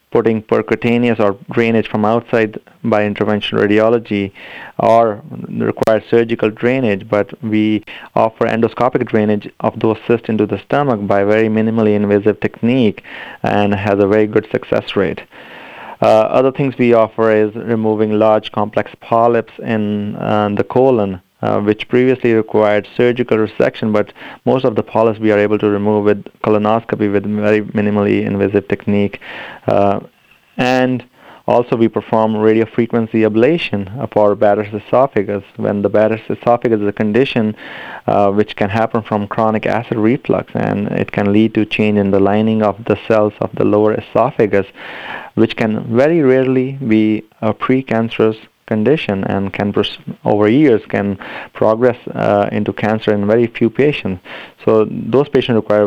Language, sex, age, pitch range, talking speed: English, male, 30-49, 105-115 Hz, 150 wpm